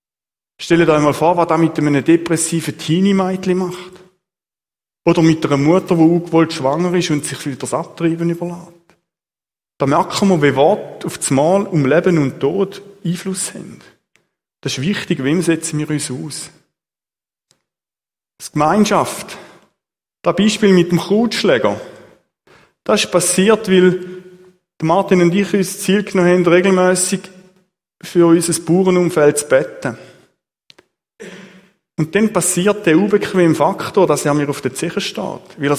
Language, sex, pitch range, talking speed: German, male, 155-185 Hz, 145 wpm